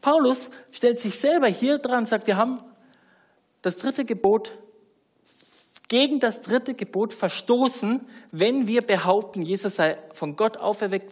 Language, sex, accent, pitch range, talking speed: German, male, German, 200-270 Hz, 140 wpm